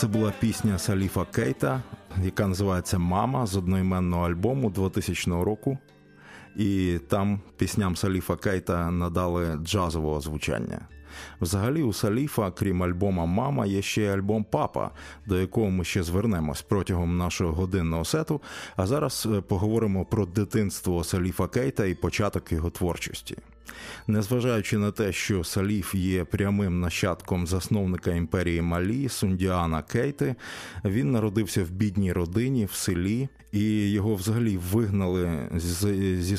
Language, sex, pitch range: Ukrainian, male, 90-110 Hz